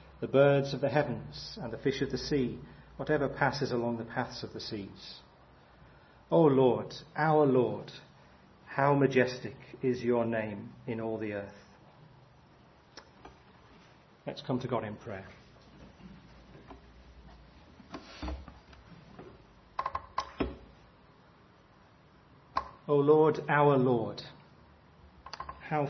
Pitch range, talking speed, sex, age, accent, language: 120-140 Hz, 100 wpm, male, 40-59, British, English